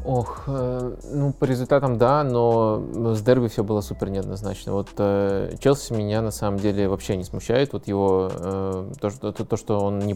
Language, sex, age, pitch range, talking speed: Russian, male, 20-39, 100-115 Hz, 185 wpm